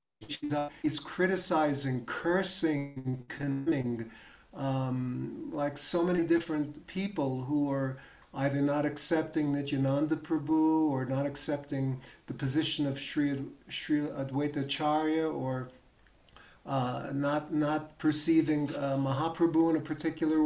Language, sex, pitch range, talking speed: English, male, 140-165 Hz, 105 wpm